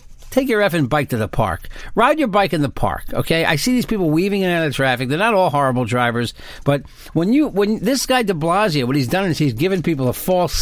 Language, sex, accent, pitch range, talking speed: English, male, American, 140-230 Hz, 260 wpm